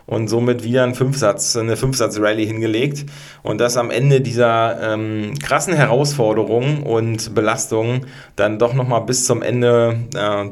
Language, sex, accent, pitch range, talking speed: German, male, German, 115-140 Hz, 145 wpm